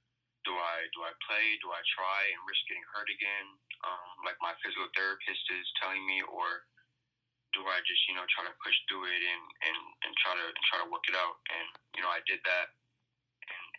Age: 20-39